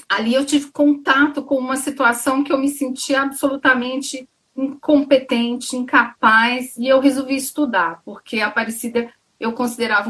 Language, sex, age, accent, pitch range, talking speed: Portuguese, female, 40-59, Brazilian, 220-275 Hz, 135 wpm